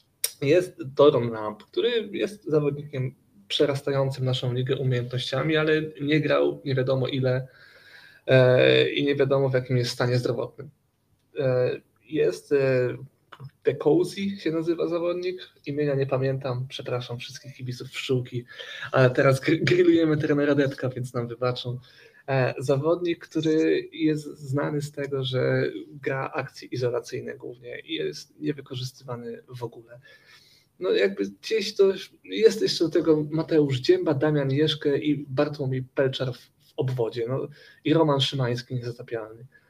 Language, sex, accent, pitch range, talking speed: Polish, male, native, 125-155 Hz, 125 wpm